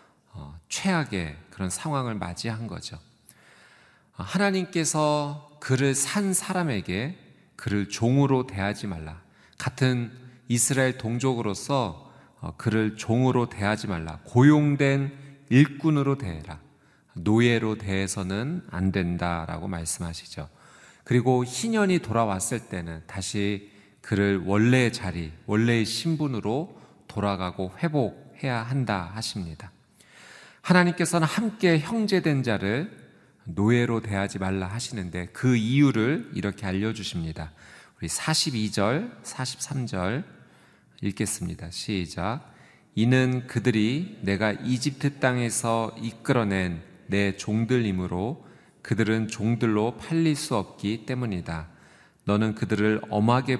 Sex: male